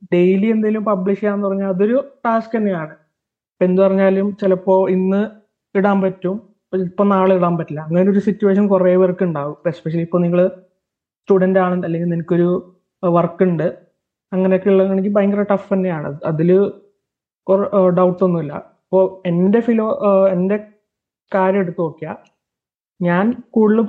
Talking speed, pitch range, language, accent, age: 125 wpm, 180-200 Hz, Malayalam, native, 20-39